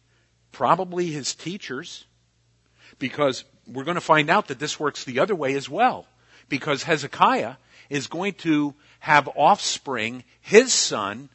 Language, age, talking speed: Italian, 50-69, 135 wpm